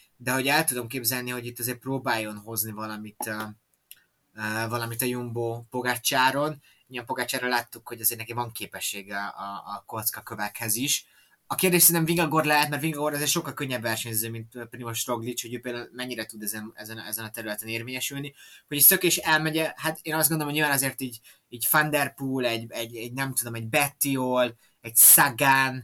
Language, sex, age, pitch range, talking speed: Hungarian, male, 20-39, 110-130 Hz, 180 wpm